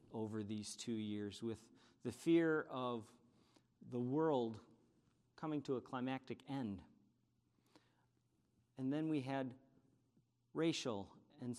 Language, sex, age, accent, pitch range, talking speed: English, male, 50-69, American, 120-150 Hz, 110 wpm